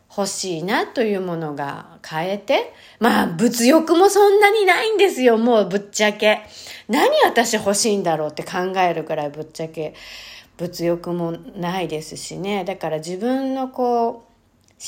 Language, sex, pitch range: Japanese, female, 175-275 Hz